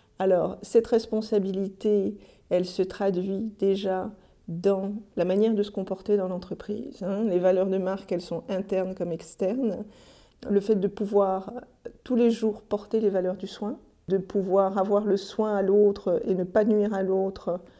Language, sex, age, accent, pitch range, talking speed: French, female, 50-69, French, 190-220 Hz, 165 wpm